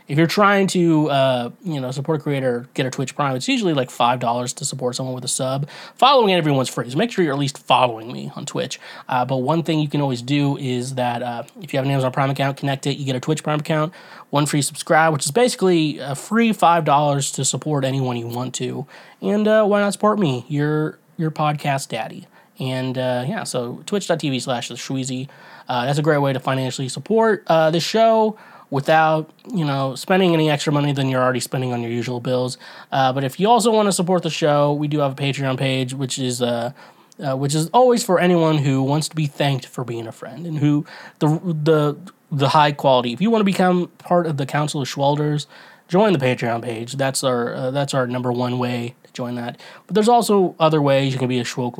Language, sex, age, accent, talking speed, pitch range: English, male, 20-39, American, 230 wpm, 130-160 Hz